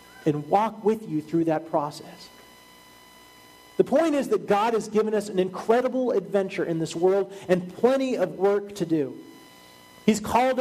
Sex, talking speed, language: male, 165 wpm, English